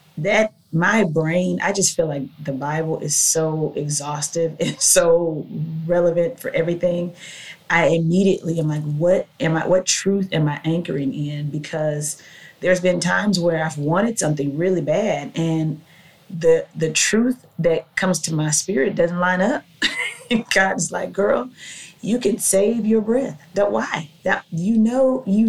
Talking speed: 155 wpm